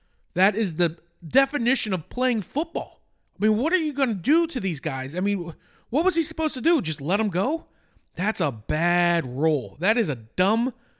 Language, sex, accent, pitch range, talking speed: English, male, American, 165-230 Hz, 205 wpm